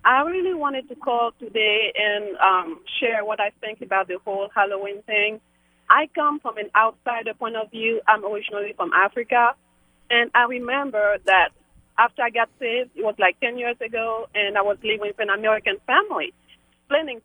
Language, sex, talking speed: English, female, 180 wpm